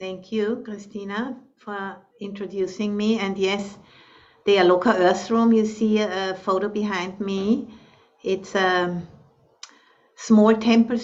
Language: English